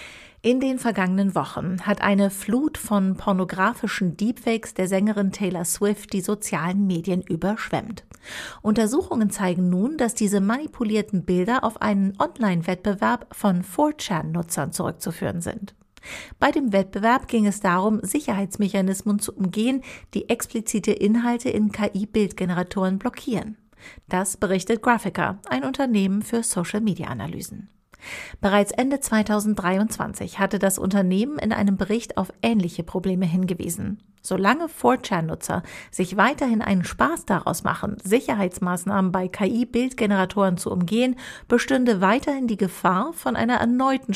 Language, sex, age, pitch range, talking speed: German, female, 50-69, 190-230 Hz, 120 wpm